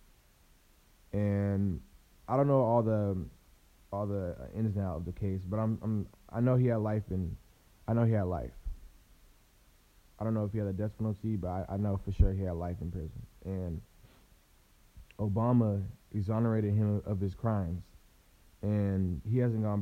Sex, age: male, 20-39